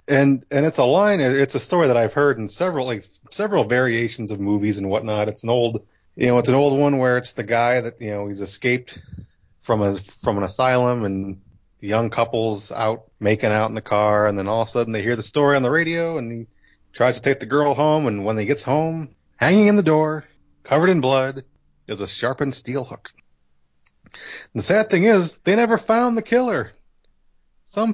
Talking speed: 215 wpm